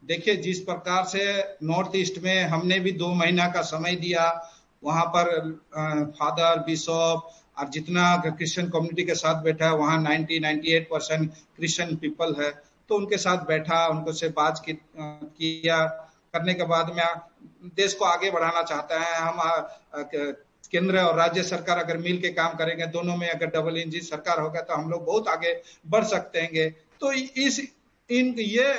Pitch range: 160-200 Hz